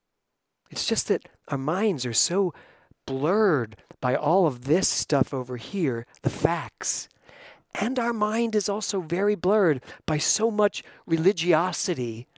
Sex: male